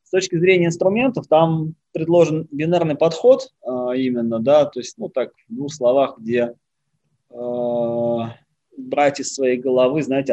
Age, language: 20-39, Russian